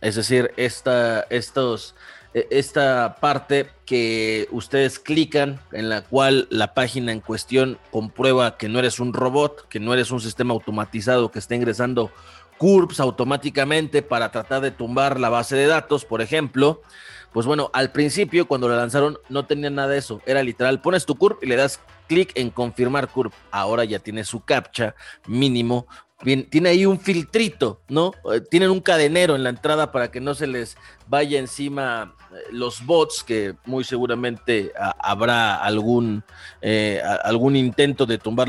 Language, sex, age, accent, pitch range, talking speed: Spanish, male, 30-49, Mexican, 115-145 Hz, 165 wpm